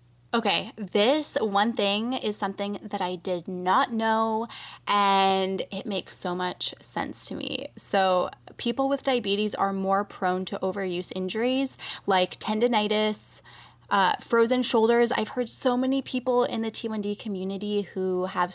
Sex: female